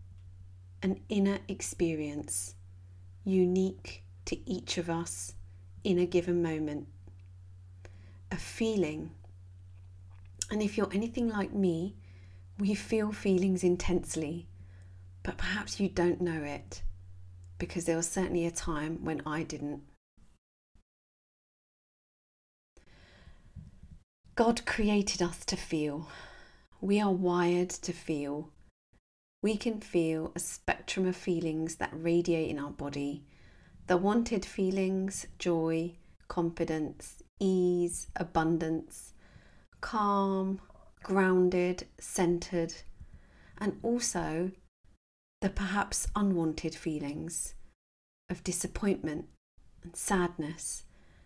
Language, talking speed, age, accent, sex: English, 95 wpm, 40-59, British, female